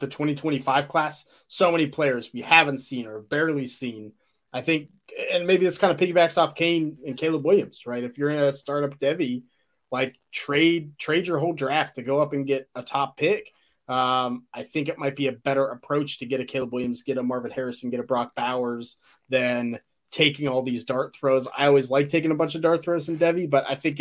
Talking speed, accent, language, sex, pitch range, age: 220 wpm, American, English, male, 125-155 Hz, 20-39